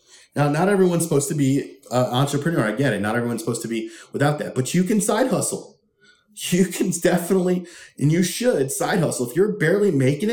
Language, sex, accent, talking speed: English, male, American, 205 wpm